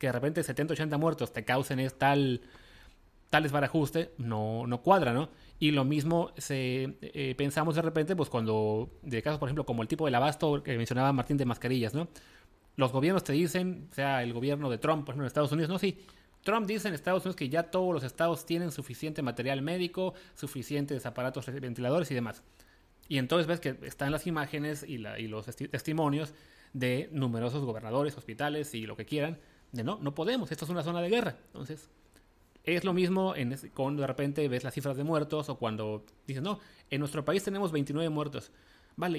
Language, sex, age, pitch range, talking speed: English, male, 30-49, 125-165 Hz, 210 wpm